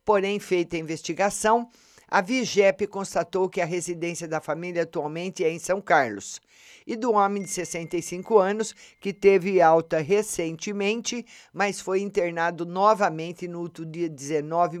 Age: 50-69